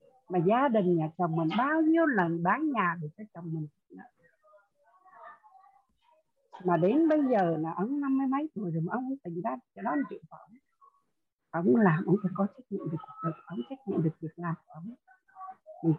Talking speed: 190 wpm